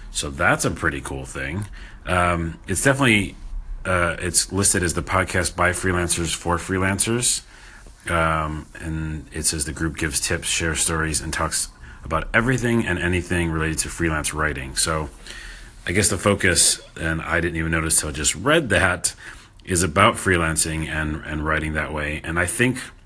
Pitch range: 75-95 Hz